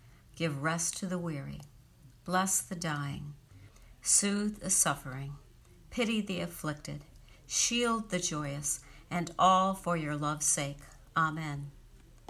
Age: 60-79